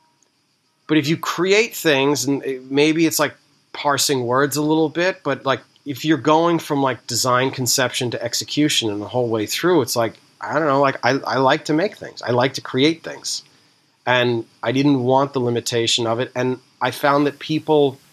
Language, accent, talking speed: English, American, 200 wpm